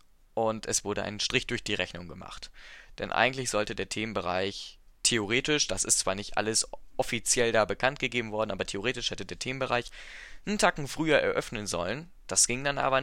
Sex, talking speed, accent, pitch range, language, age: male, 180 wpm, German, 105-130 Hz, German, 20-39